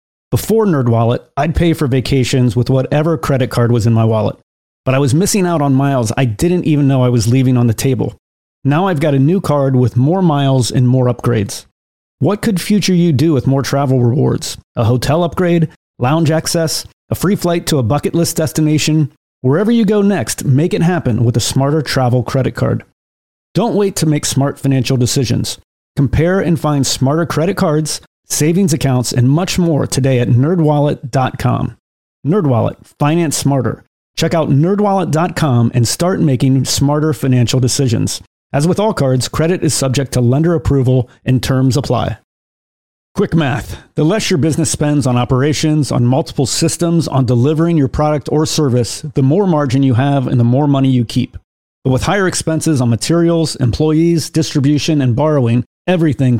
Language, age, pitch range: English, 30-49, 125-160 Hz